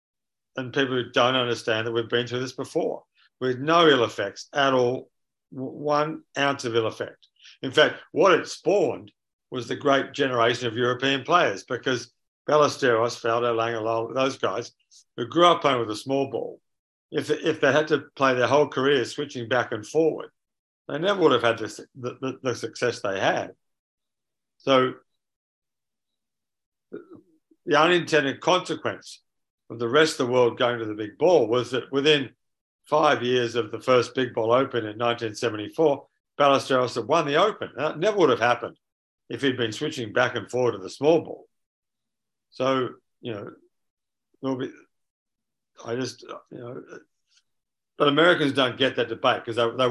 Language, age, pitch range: English, 50-69, 120-145 Hz